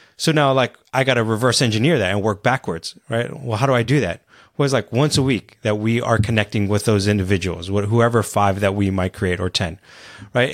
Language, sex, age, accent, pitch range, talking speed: English, male, 30-49, American, 110-145 Hz, 235 wpm